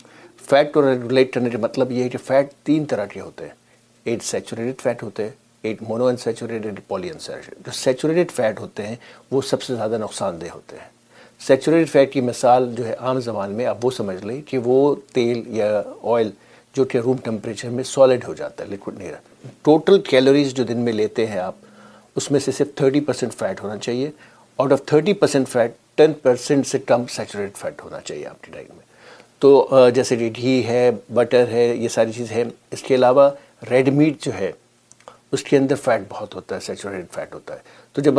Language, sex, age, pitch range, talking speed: Urdu, male, 60-79, 120-135 Hz, 195 wpm